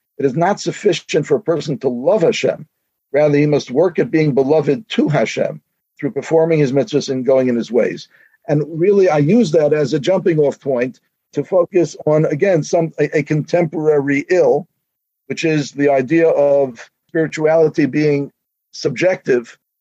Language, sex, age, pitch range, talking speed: English, male, 50-69, 140-170 Hz, 165 wpm